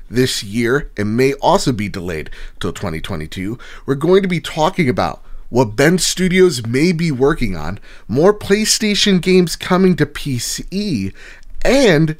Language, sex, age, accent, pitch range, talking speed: English, male, 30-49, American, 110-155 Hz, 145 wpm